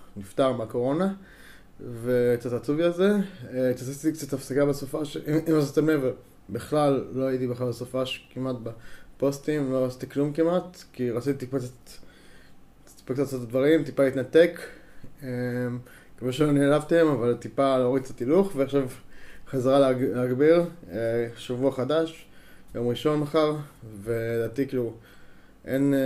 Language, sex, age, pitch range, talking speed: Hebrew, male, 20-39, 125-145 Hz, 115 wpm